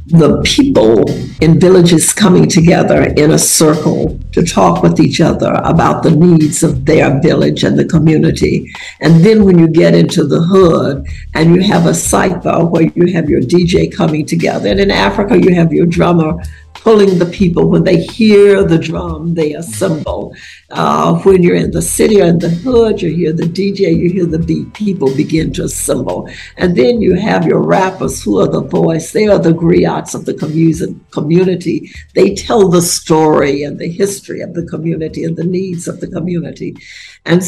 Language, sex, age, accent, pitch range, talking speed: English, female, 60-79, American, 160-185 Hz, 185 wpm